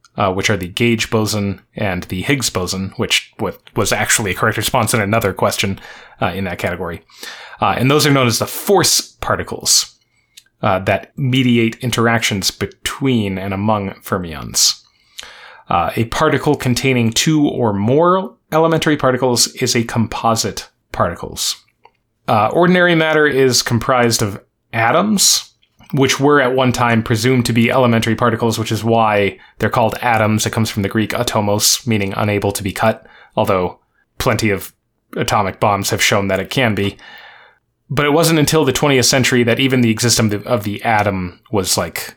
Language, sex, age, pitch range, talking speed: English, male, 20-39, 105-130 Hz, 165 wpm